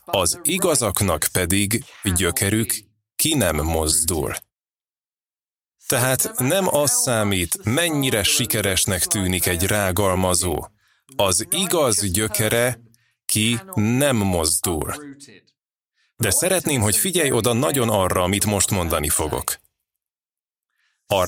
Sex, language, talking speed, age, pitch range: male, Hungarian, 95 wpm, 30-49, 95-125 Hz